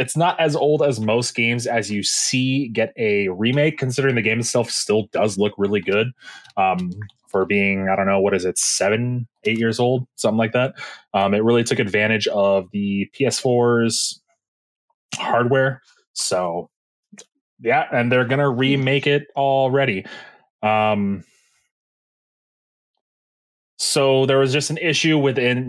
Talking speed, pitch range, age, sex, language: 150 wpm, 105-135 Hz, 20-39, male, English